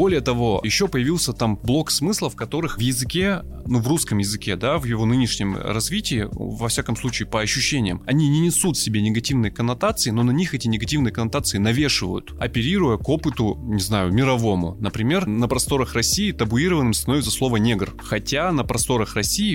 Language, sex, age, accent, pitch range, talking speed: Russian, male, 20-39, native, 105-125 Hz, 170 wpm